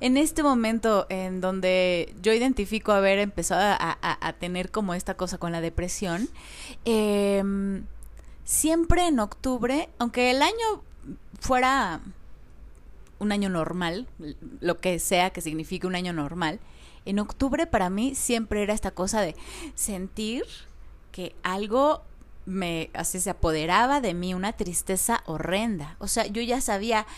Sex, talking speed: female, 140 wpm